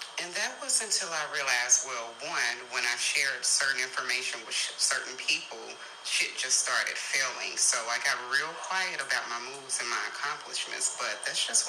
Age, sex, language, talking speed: 30-49, female, English, 175 wpm